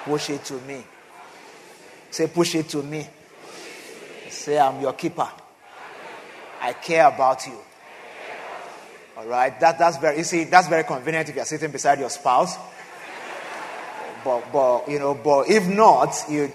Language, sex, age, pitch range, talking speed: English, male, 30-49, 135-170 Hz, 150 wpm